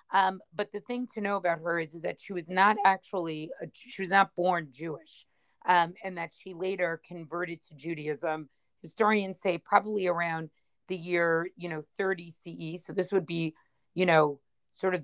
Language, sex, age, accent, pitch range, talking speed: English, female, 40-59, American, 170-195 Hz, 190 wpm